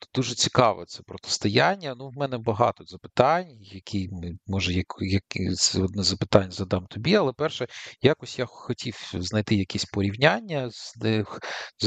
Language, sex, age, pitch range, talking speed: Ukrainian, male, 40-59, 95-125 Hz, 125 wpm